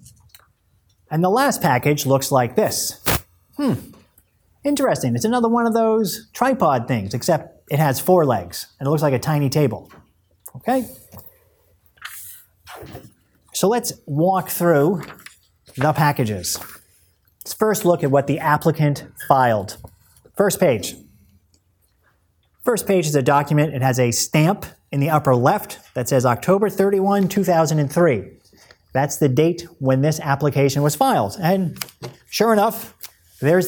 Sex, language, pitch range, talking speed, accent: male, English, 120-170 Hz, 135 wpm, American